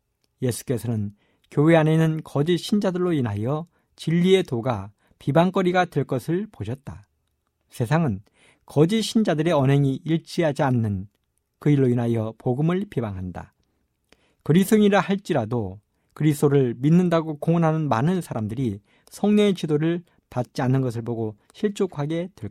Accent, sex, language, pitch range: native, male, Korean, 110-165 Hz